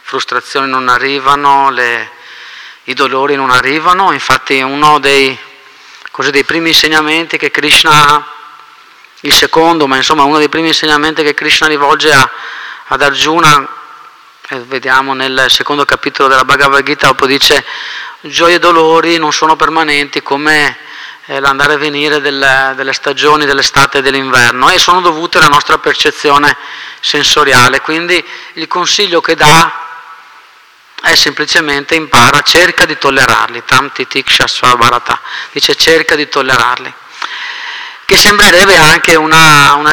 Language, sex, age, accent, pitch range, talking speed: Italian, male, 30-49, native, 135-155 Hz, 125 wpm